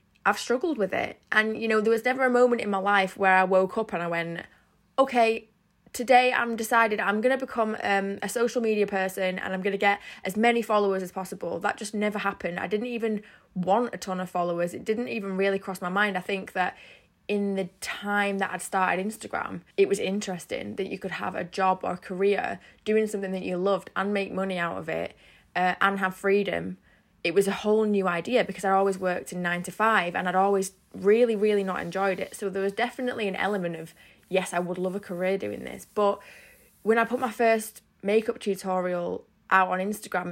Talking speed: 215 wpm